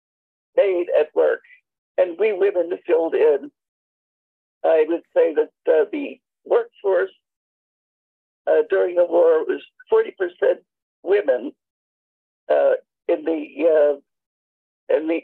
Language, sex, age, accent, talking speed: English, male, 60-79, American, 115 wpm